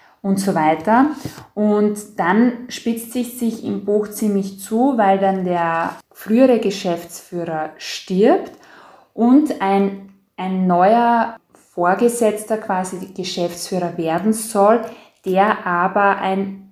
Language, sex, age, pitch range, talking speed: German, female, 20-39, 180-220 Hz, 110 wpm